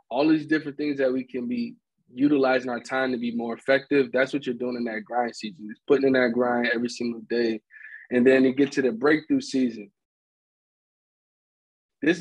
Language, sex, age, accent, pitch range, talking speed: English, male, 20-39, American, 130-155 Hz, 195 wpm